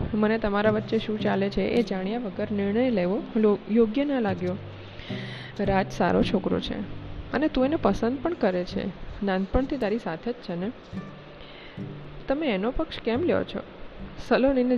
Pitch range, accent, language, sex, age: 190-240 Hz, native, Gujarati, female, 20-39